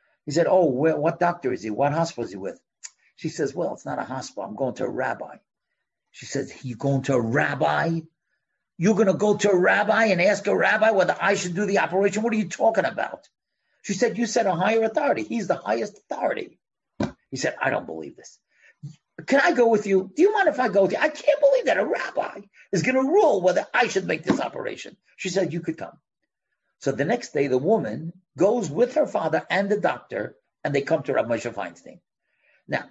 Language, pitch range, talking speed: English, 135-220 Hz, 230 wpm